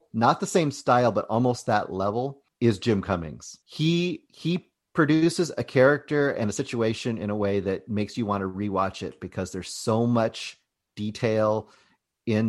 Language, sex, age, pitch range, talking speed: English, male, 30-49, 100-130 Hz, 170 wpm